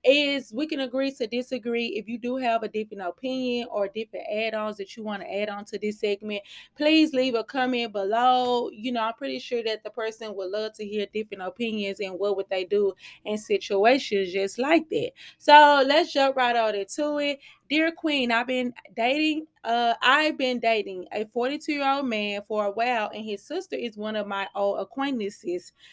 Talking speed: 195 wpm